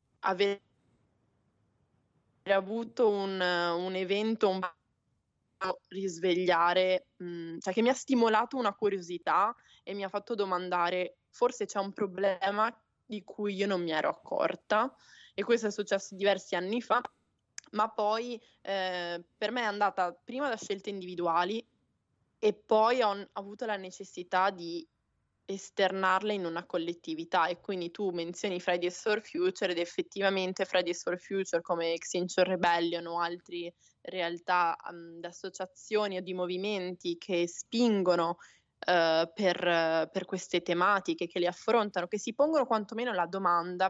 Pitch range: 175-210 Hz